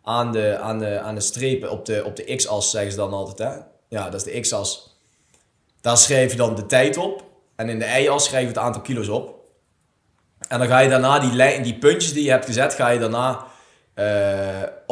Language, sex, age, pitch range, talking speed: Dutch, male, 20-39, 110-140 Hz, 230 wpm